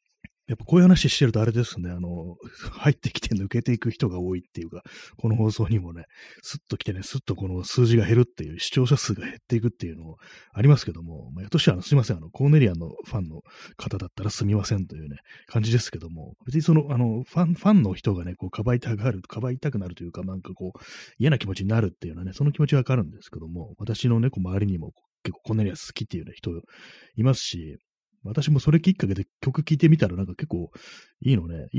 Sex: male